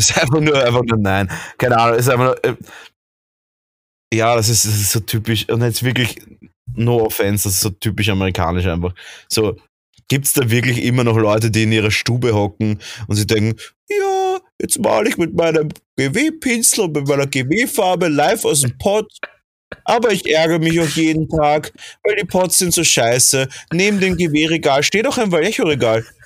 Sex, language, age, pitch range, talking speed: male, German, 30-49, 110-155 Hz, 190 wpm